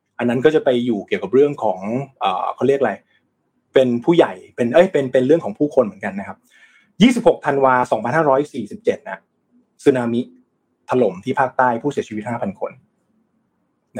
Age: 20-39